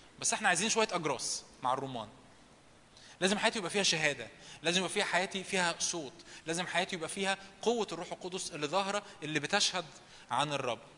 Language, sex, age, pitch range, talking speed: Arabic, male, 20-39, 160-220 Hz, 170 wpm